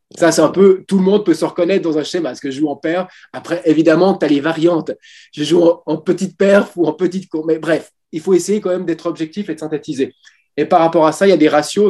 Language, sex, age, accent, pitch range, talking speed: French, male, 20-39, French, 150-180 Hz, 275 wpm